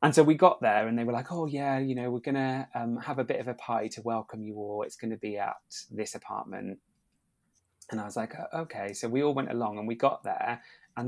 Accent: British